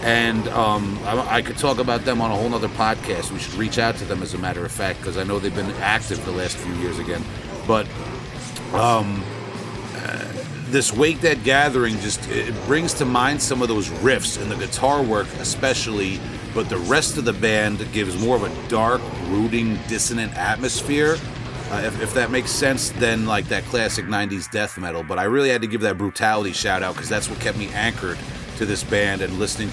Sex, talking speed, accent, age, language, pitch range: male, 210 wpm, American, 40-59, English, 100-120 Hz